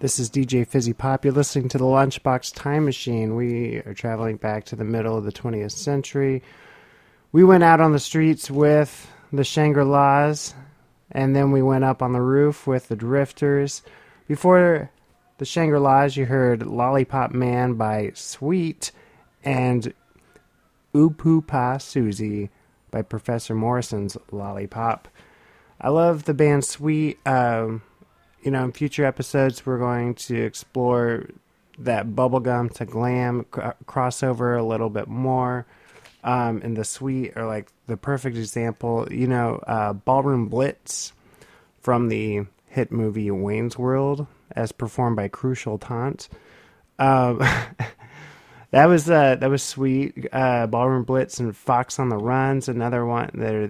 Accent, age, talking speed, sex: American, 30-49, 145 wpm, male